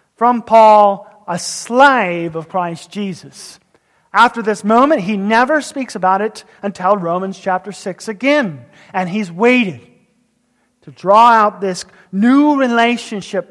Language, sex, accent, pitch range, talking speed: English, male, American, 175-230 Hz, 130 wpm